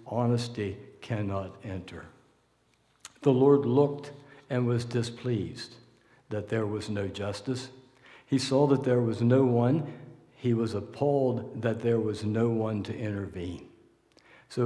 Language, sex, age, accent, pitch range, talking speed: English, male, 60-79, American, 105-130 Hz, 130 wpm